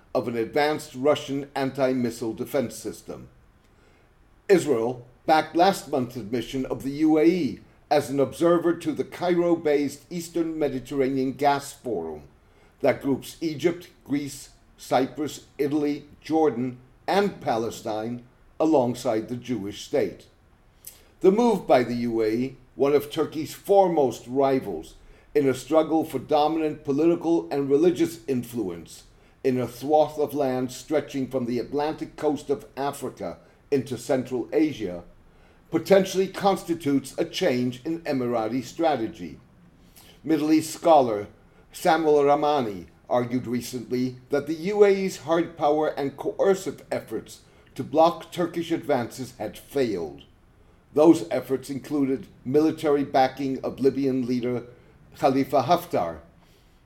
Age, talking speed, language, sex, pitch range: 50-69, 115 wpm, English, male, 125-155 Hz